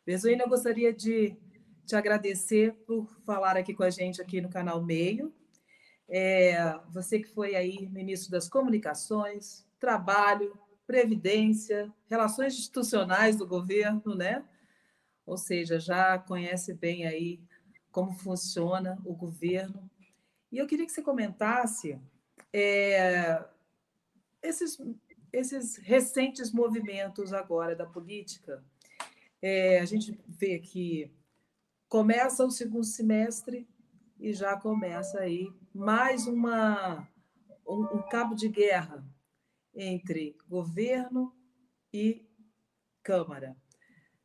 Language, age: Portuguese, 40-59